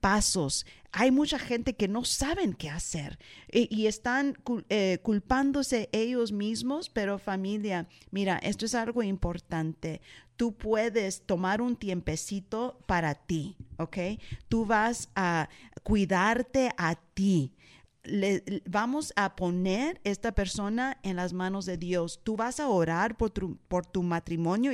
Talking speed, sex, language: 135 wpm, female, Spanish